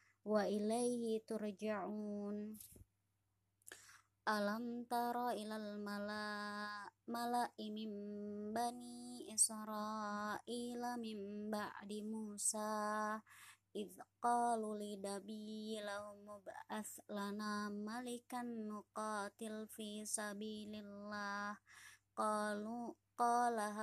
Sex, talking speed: male, 55 wpm